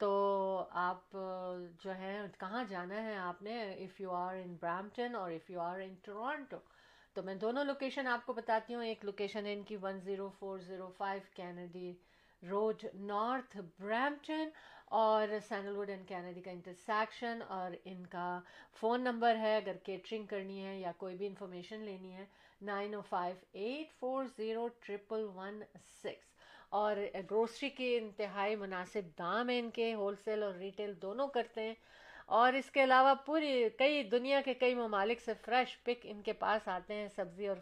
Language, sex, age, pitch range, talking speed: Urdu, female, 50-69, 190-235 Hz, 160 wpm